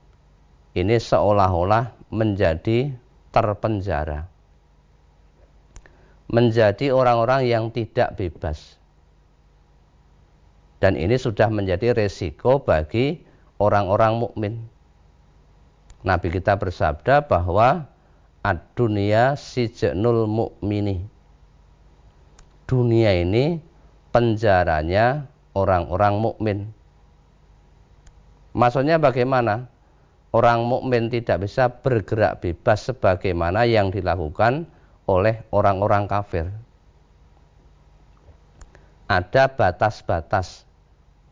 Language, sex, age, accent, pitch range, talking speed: Indonesian, male, 40-59, native, 80-115 Hz, 65 wpm